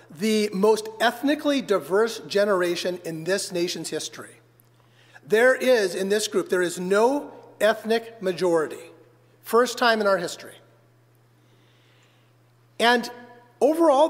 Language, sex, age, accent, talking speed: English, male, 40-59, American, 110 wpm